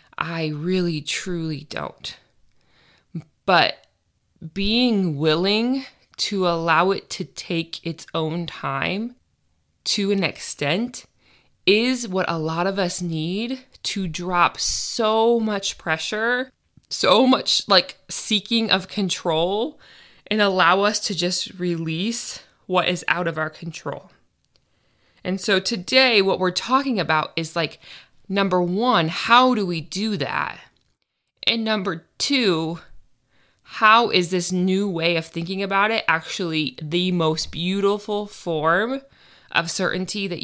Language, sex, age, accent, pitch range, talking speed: English, female, 20-39, American, 165-205 Hz, 125 wpm